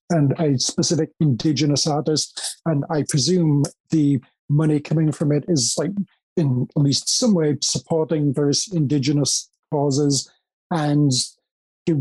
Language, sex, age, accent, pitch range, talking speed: English, male, 40-59, British, 155-200 Hz, 130 wpm